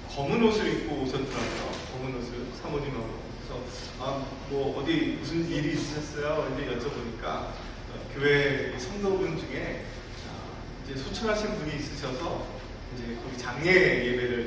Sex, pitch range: male, 125-160 Hz